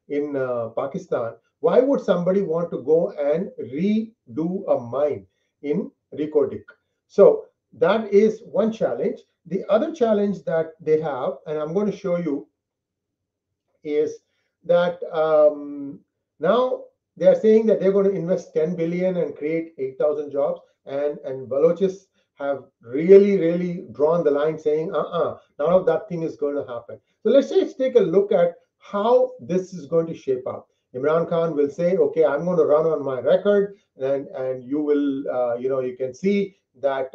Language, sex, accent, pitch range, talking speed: English, male, Indian, 140-200 Hz, 170 wpm